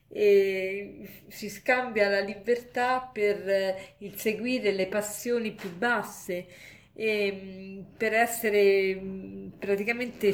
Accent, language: native, Italian